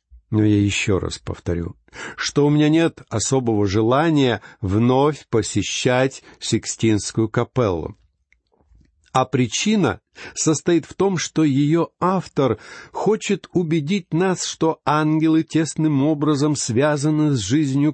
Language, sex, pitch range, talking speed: Russian, male, 105-150 Hz, 110 wpm